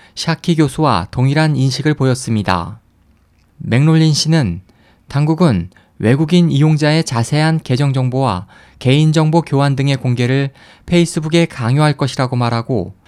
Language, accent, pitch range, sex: Korean, native, 120-155 Hz, male